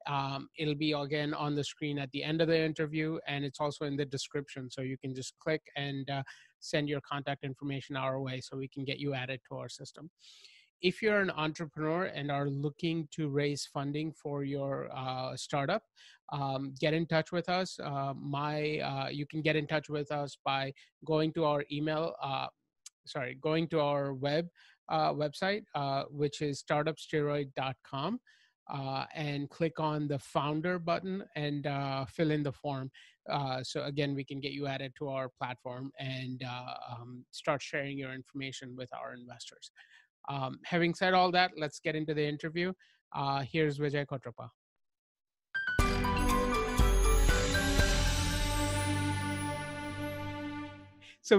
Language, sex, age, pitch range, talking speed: English, male, 30-49, 135-155 Hz, 160 wpm